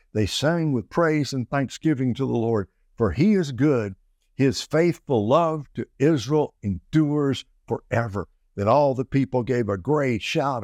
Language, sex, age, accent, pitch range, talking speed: English, male, 60-79, American, 100-130 Hz, 160 wpm